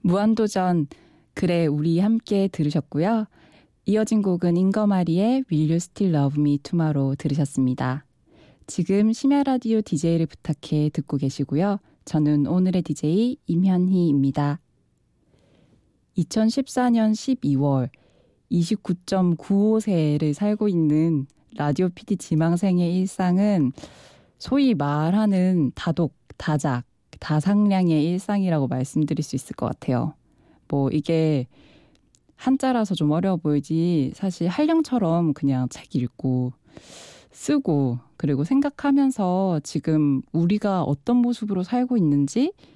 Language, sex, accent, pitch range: Korean, female, native, 145-200 Hz